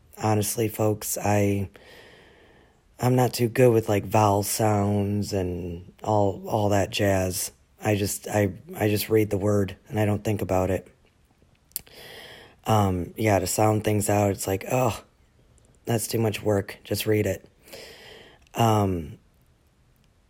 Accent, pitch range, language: American, 95-110 Hz, English